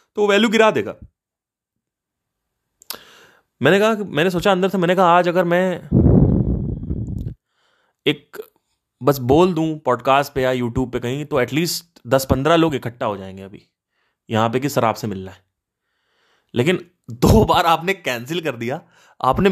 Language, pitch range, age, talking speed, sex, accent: Hindi, 120-185 Hz, 20-39, 150 wpm, male, native